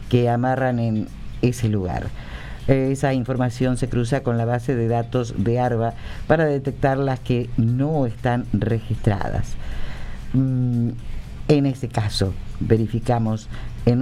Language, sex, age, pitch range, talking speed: Spanish, female, 50-69, 115-150 Hz, 120 wpm